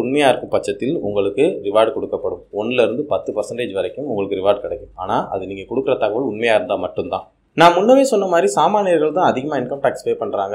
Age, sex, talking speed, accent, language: 20-39, male, 175 wpm, native, Tamil